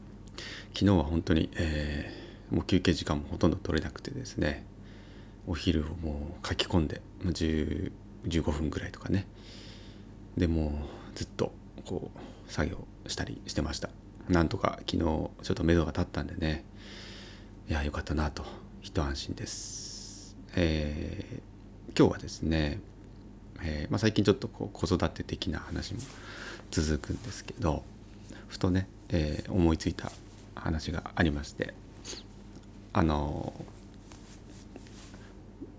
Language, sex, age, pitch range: Japanese, male, 30-49, 85-105 Hz